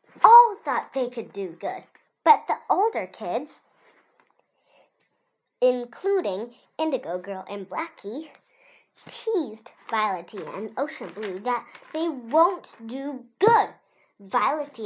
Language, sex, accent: Chinese, male, American